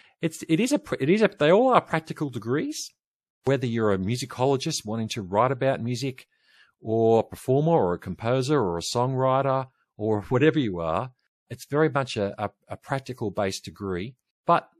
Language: English